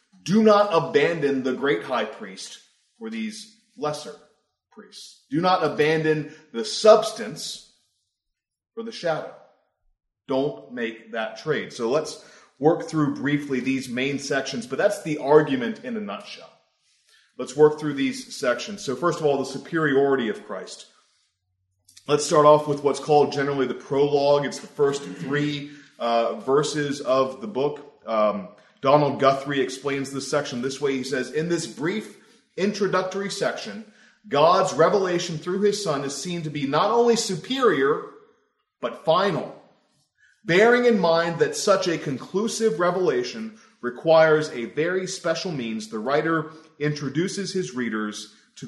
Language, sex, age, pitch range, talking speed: English, male, 30-49, 140-205 Hz, 145 wpm